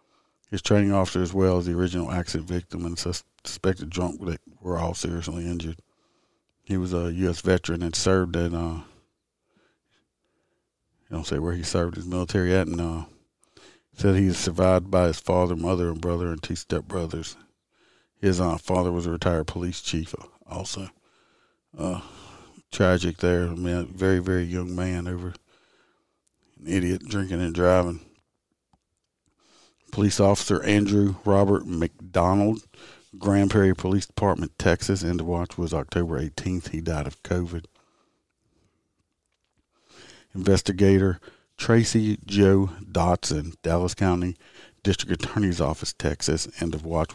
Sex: male